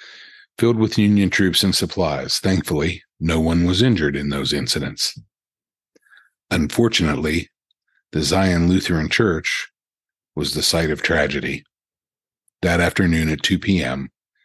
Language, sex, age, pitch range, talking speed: English, male, 50-69, 80-100 Hz, 120 wpm